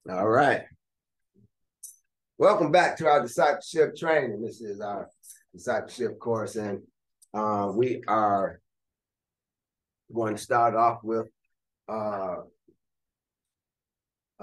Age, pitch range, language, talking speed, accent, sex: 30-49, 110-165 Hz, English, 95 wpm, American, male